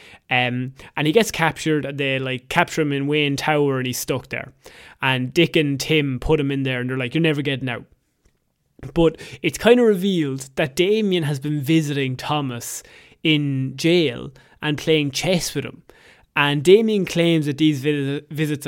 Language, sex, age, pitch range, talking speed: English, male, 20-39, 140-165 Hz, 175 wpm